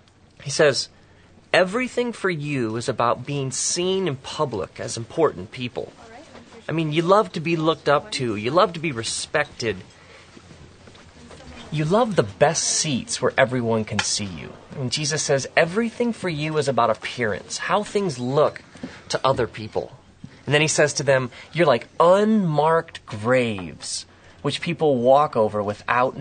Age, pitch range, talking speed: 30-49, 115-165 Hz, 155 wpm